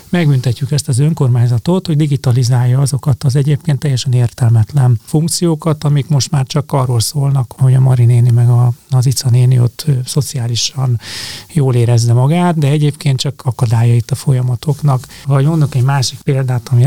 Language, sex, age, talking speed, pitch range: Hungarian, male, 30-49, 155 wpm, 125-155 Hz